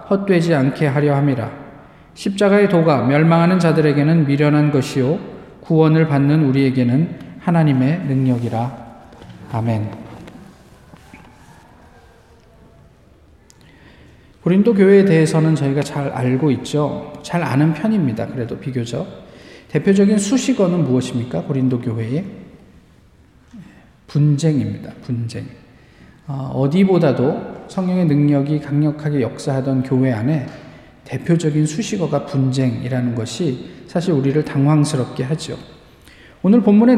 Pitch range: 130-185 Hz